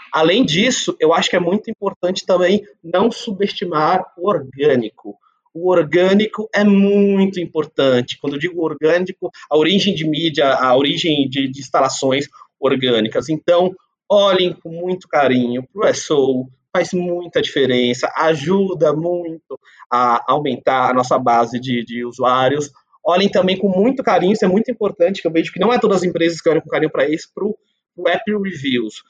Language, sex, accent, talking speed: Portuguese, male, Brazilian, 165 wpm